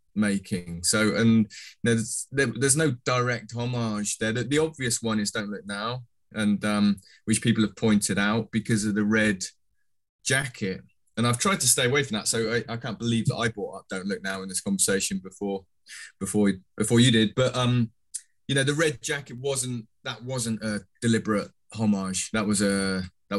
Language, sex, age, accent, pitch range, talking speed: English, male, 20-39, British, 100-120 Hz, 190 wpm